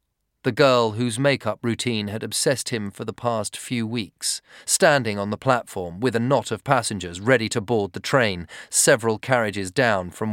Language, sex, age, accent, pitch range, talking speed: English, male, 40-59, British, 105-130 Hz, 180 wpm